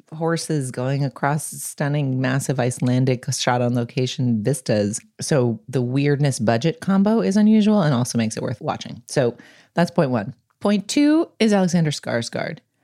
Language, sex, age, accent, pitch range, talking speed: English, female, 30-49, American, 120-185 Hz, 135 wpm